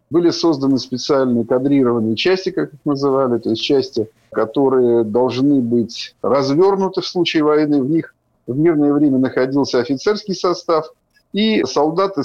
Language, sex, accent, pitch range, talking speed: Russian, male, native, 135-175 Hz, 135 wpm